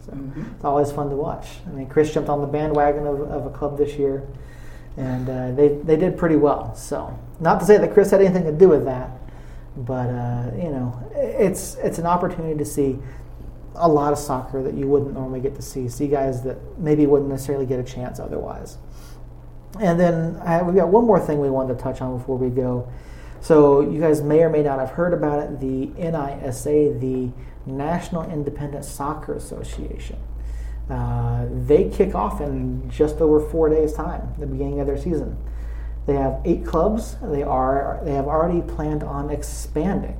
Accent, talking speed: American, 195 wpm